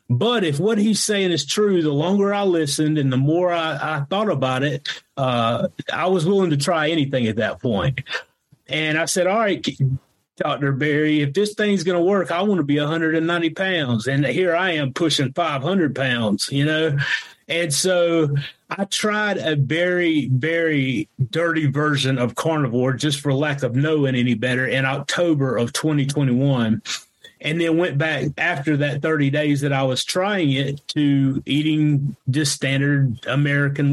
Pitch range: 140-165 Hz